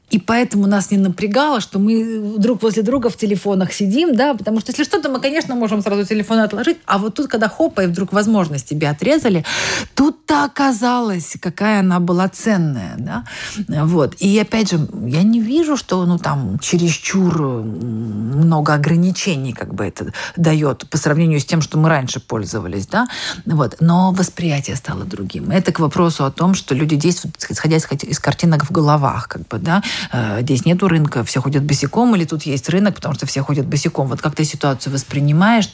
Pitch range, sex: 145-205 Hz, female